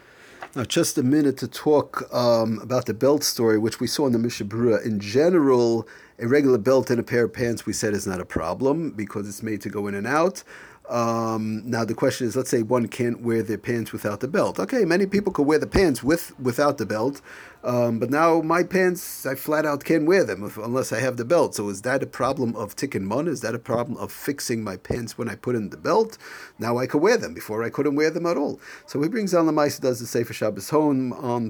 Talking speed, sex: 250 wpm, male